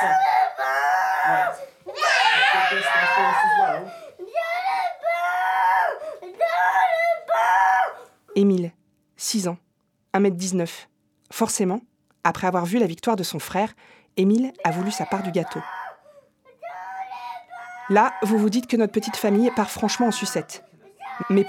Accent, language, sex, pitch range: French, French, female, 180-230 Hz